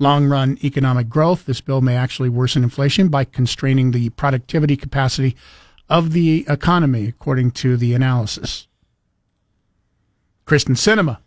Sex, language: male, English